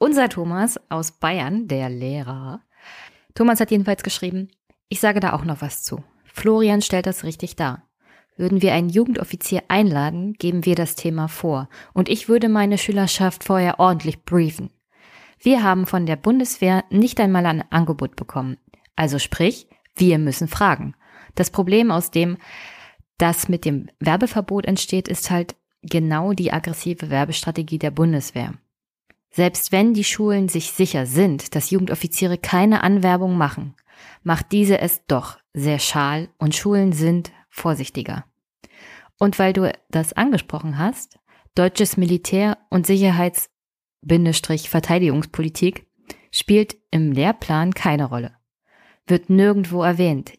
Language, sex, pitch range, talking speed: German, female, 155-195 Hz, 135 wpm